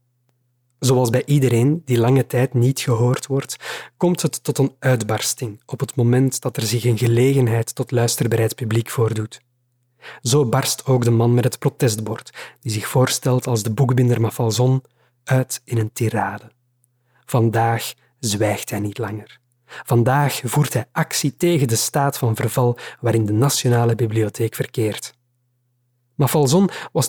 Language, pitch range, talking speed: Dutch, 120-145 Hz, 150 wpm